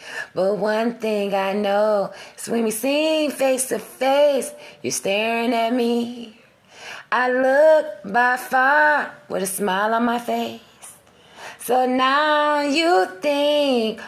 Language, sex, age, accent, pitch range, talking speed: English, female, 20-39, American, 205-275 Hz, 130 wpm